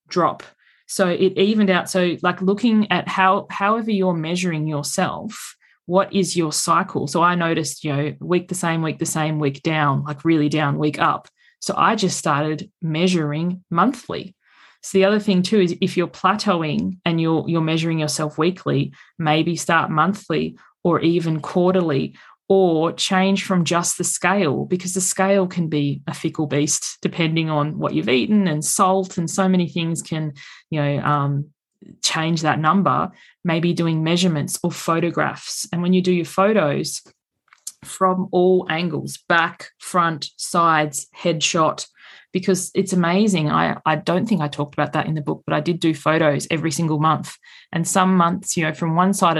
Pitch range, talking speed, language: 155-185 Hz, 175 wpm, English